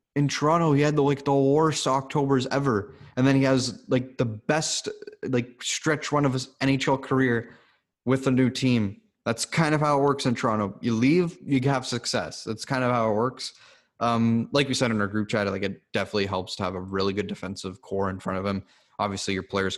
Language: English